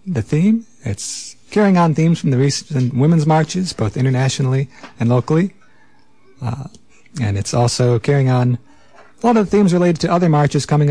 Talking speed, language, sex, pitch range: 165 wpm, English, male, 120-160 Hz